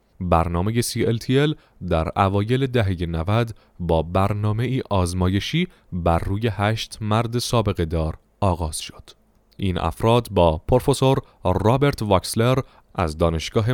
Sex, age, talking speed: male, 30-49, 115 wpm